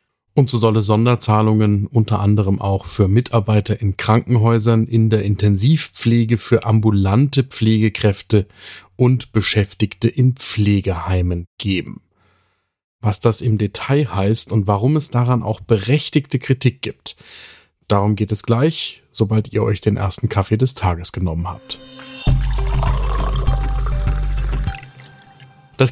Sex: male